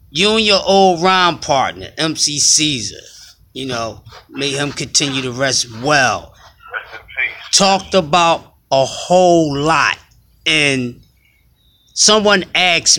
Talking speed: 110 wpm